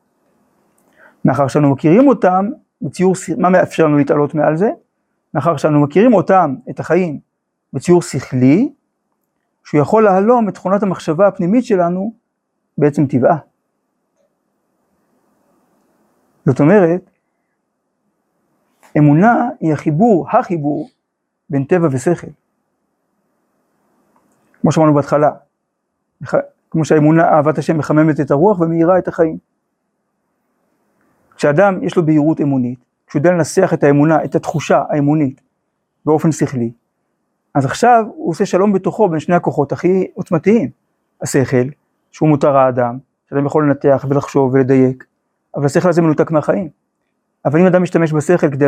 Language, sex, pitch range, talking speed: Hebrew, male, 145-185 Hz, 120 wpm